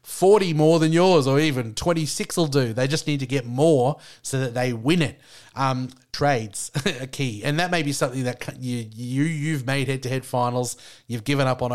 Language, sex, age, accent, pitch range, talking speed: English, male, 30-49, Australian, 125-145 Hz, 205 wpm